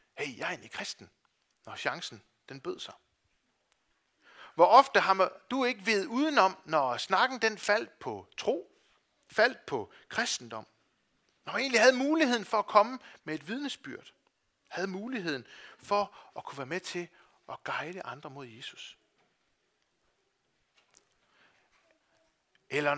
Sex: male